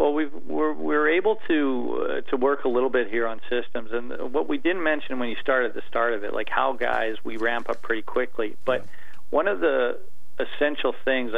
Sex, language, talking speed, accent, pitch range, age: male, English, 215 wpm, American, 115-130 Hz, 40-59